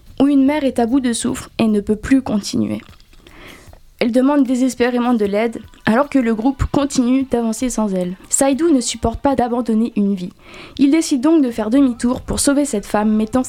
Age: 20-39